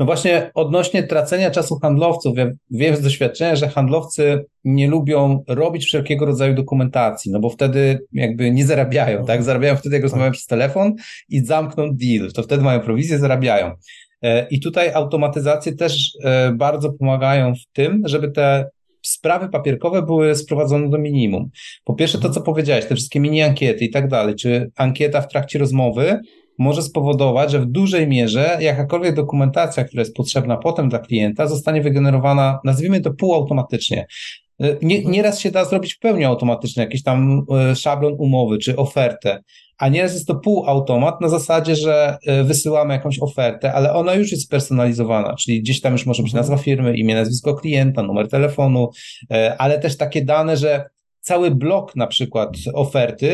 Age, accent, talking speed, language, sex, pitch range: 30-49, native, 160 wpm, Polish, male, 130-155 Hz